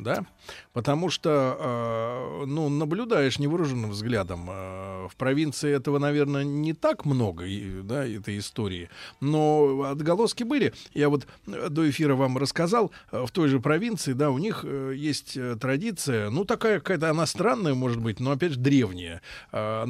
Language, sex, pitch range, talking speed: Russian, male, 120-160 Hz, 150 wpm